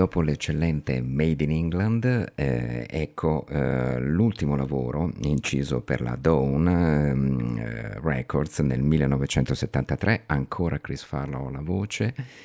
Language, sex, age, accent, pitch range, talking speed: Italian, male, 50-69, native, 65-80 Hz, 115 wpm